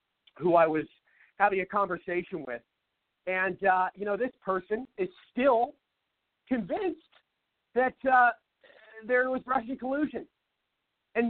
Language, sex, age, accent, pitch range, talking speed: English, male, 40-59, American, 195-265 Hz, 120 wpm